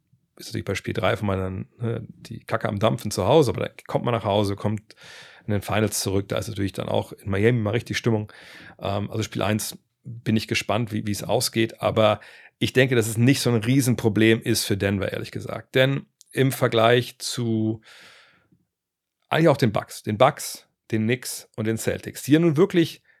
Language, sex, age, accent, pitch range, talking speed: German, male, 40-59, German, 105-130 Hz, 200 wpm